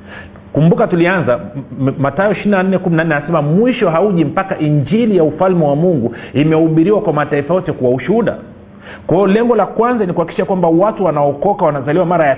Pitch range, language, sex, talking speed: 135-190 Hz, Swahili, male, 155 wpm